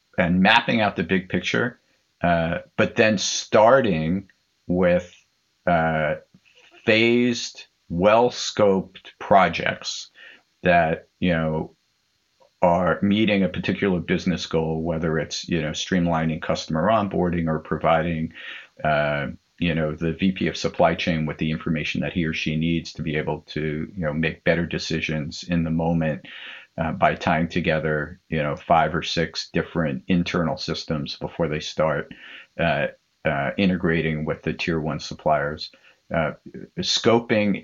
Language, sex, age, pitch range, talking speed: Dutch, male, 50-69, 80-90 Hz, 135 wpm